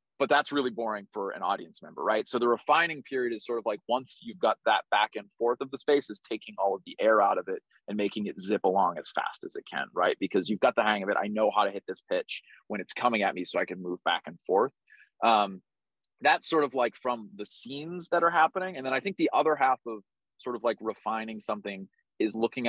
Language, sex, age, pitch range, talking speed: English, male, 30-49, 110-160 Hz, 260 wpm